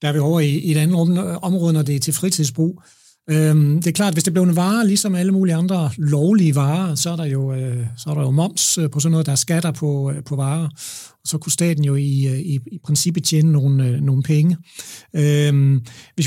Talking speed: 210 wpm